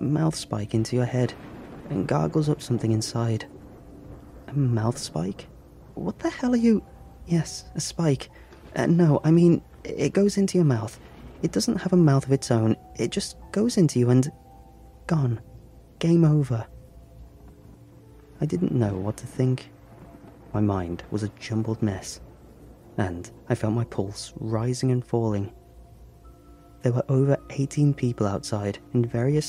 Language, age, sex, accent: English, 30-49, male, British